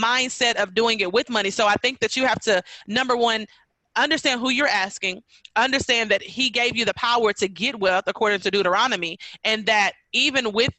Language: English